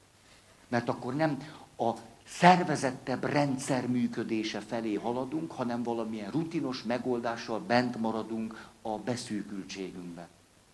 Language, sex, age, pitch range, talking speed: Hungarian, male, 60-79, 110-145 Hz, 95 wpm